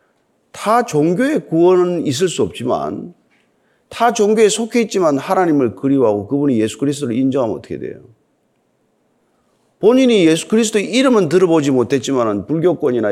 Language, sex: Korean, male